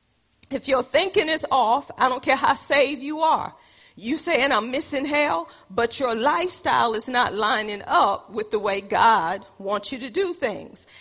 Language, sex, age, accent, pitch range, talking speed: English, female, 40-59, American, 220-290 Hz, 185 wpm